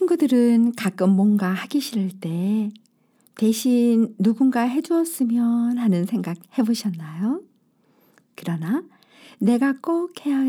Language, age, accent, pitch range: Korean, 50-69, native, 185-265 Hz